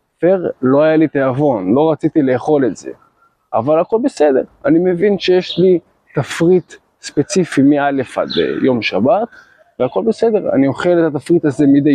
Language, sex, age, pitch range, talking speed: Hebrew, male, 20-39, 145-195 Hz, 155 wpm